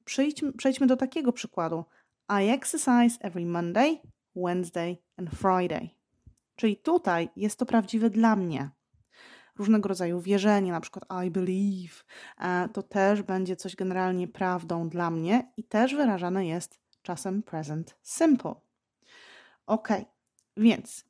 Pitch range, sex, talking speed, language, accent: 175-235 Hz, female, 120 wpm, Polish, native